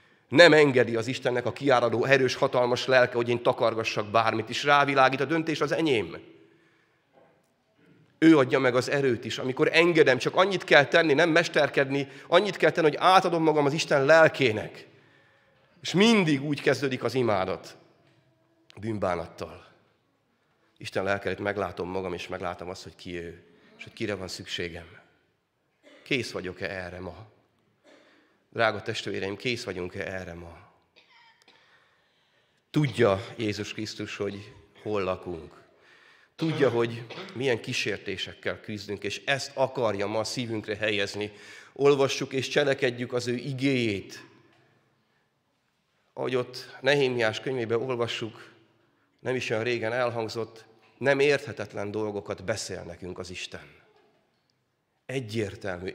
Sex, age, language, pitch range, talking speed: male, 30-49, Hungarian, 105-140 Hz, 125 wpm